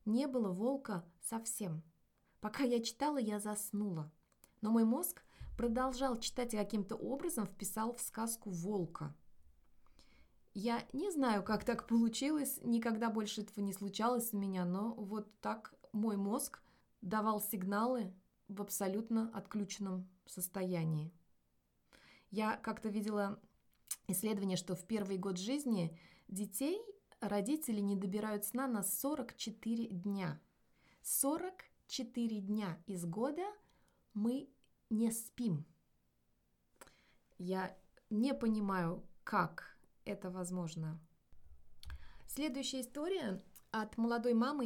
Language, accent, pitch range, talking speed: Russian, native, 185-235 Hz, 105 wpm